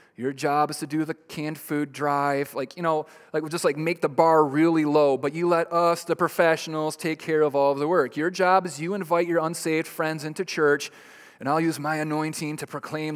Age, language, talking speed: 30-49, English, 230 wpm